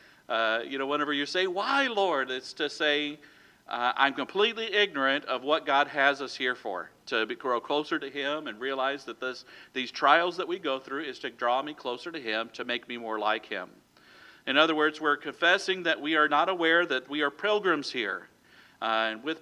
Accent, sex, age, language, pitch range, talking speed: American, male, 50-69, English, 135-170 Hz, 210 wpm